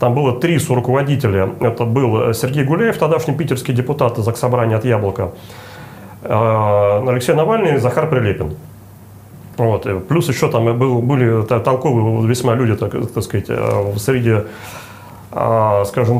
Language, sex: Russian, male